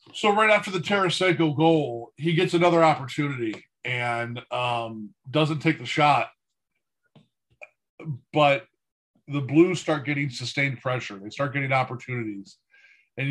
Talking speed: 125 wpm